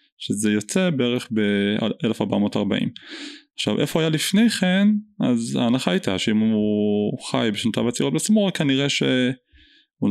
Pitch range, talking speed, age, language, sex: 105-155 Hz, 120 wpm, 20-39, Hebrew, male